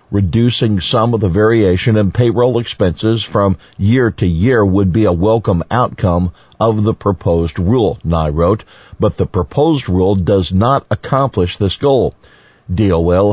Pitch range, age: 90-115 Hz, 50-69